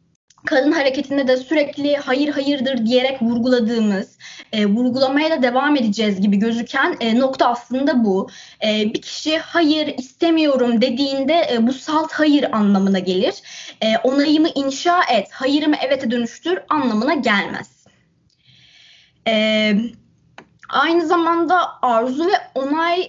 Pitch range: 240-320 Hz